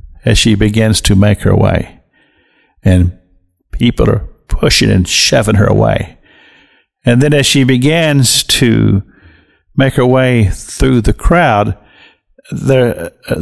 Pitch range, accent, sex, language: 95-130 Hz, American, male, English